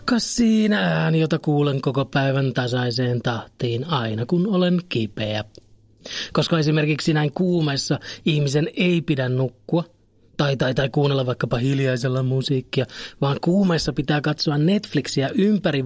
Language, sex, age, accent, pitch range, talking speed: Finnish, male, 30-49, native, 130-170 Hz, 130 wpm